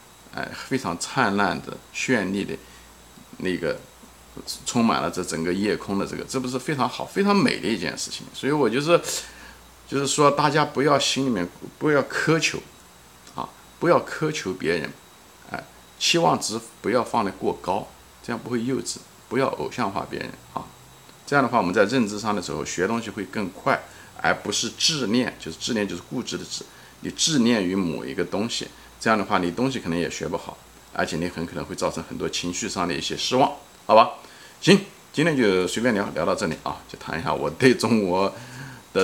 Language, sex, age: Chinese, male, 50-69